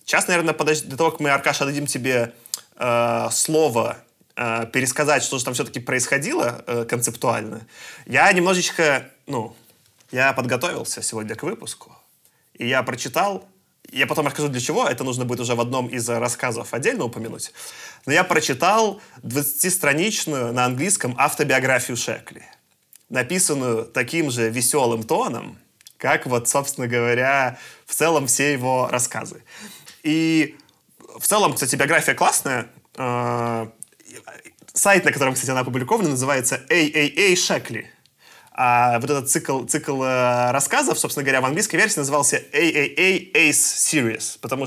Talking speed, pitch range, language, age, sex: 135 wpm, 120-150 Hz, Russian, 20-39, male